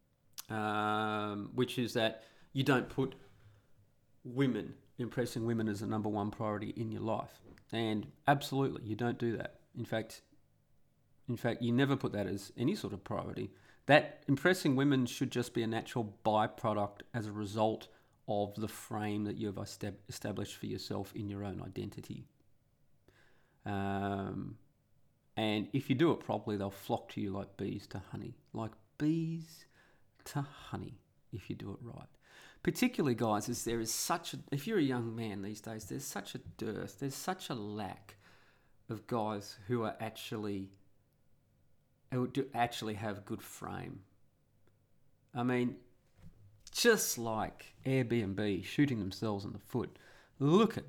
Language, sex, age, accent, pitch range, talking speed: English, male, 30-49, Australian, 105-130 Hz, 155 wpm